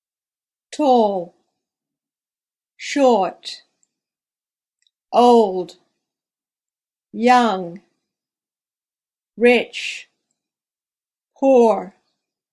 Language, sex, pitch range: English, female, 200-255 Hz